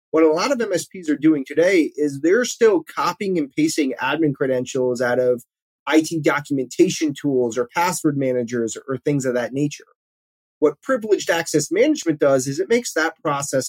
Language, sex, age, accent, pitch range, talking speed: English, male, 30-49, American, 135-185 Hz, 170 wpm